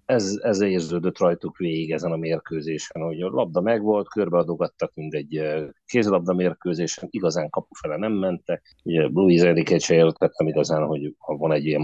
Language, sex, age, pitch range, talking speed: Hungarian, male, 30-49, 75-90 Hz, 175 wpm